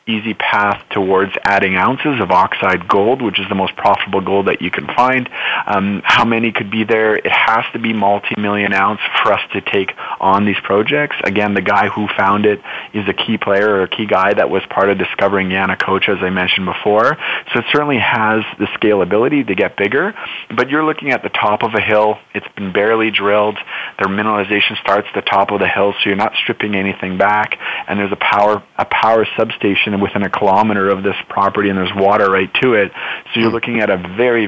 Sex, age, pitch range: male, 30-49, 100-110 Hz